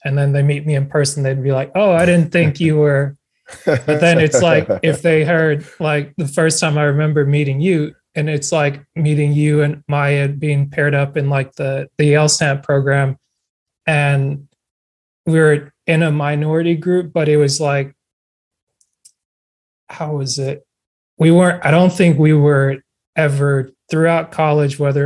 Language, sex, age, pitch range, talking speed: English, male, 20-39, 140-155 Hz, 170 wpm